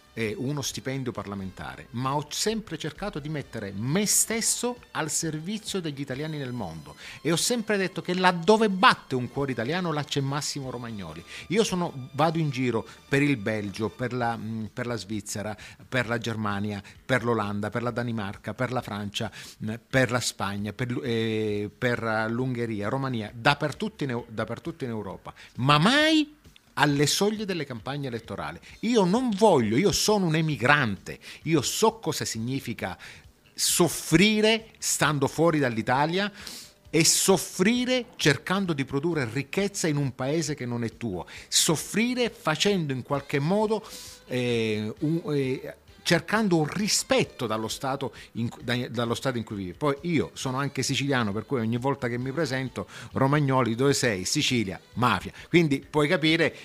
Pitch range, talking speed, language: 115-165 Hz, 155 wpm, Italian